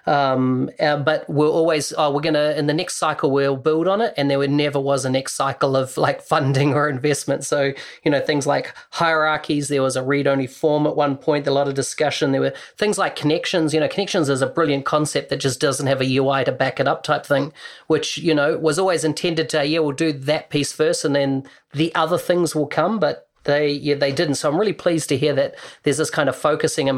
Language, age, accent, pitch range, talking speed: English, 30-49, Australian, 135-155 Hz, 235 wpm